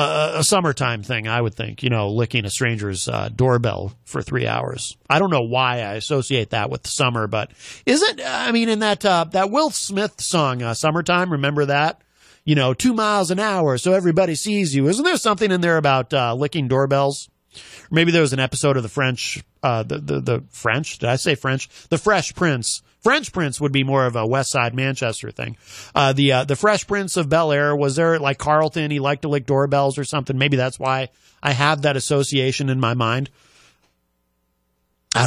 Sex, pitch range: male, 120-160 Hz